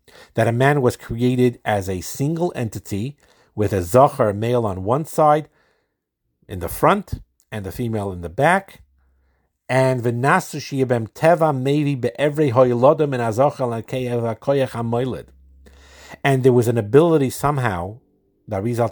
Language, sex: English, male